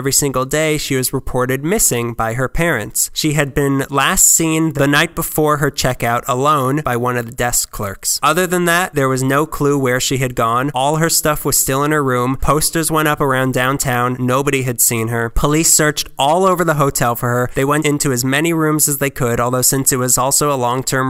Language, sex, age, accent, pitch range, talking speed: English, male, 20-39, American, 125-155 Hz, 230 wpm